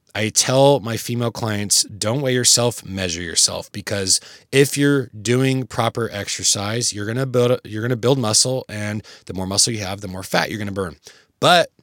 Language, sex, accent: English, male, American